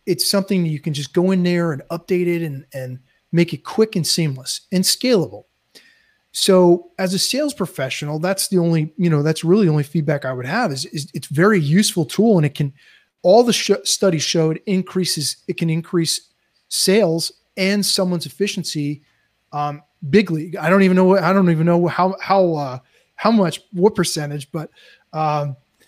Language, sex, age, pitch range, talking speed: English, male, 30-49, 155-195 Hz, 185 wpm